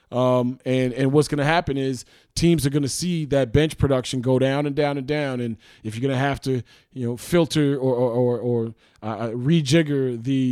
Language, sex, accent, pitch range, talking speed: English, male, American, 130-170 Hz, 220 wpm